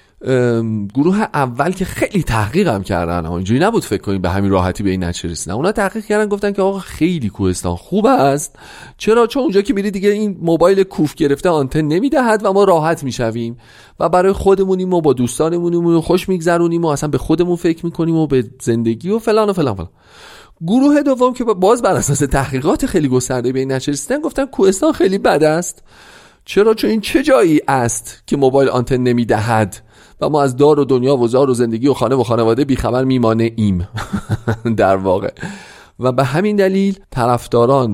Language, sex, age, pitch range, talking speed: Persian, male, 40-59, 115-180 Hz, 180 wpm